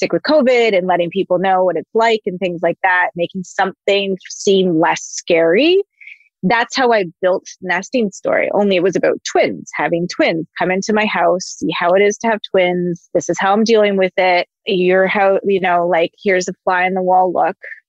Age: 20-39